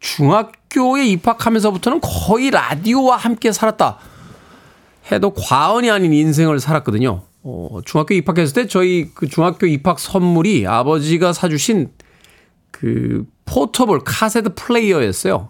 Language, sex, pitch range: Korean, male, 130-210 Hz